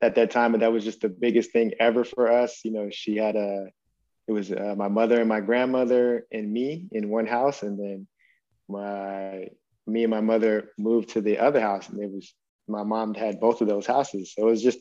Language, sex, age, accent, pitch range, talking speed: English, male, 20-39, American, 110-120 Hz, 230 wpm